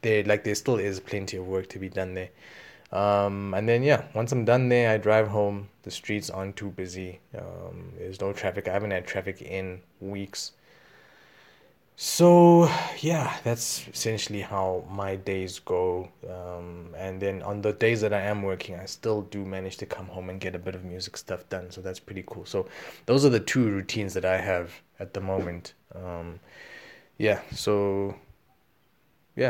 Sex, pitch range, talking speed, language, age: male, 95-110 Hz, 185 wpm, English, 20-39